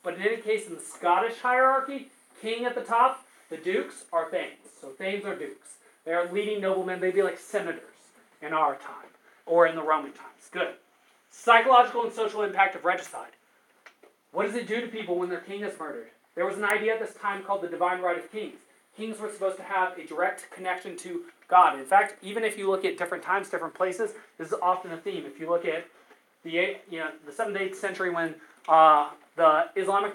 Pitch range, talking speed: 165-210 Hz, 215 wpm